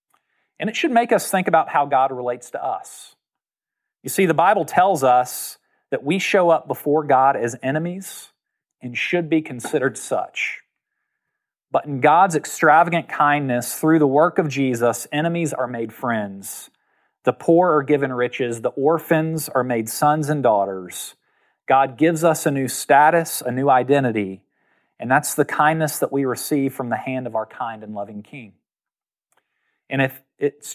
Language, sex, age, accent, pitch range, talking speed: English, male, 40-59, American, 125-165 Hz, 165 wpm